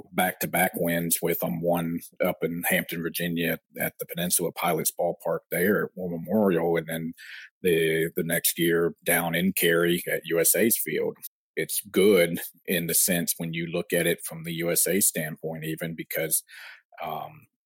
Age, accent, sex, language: 40-59, American, male, English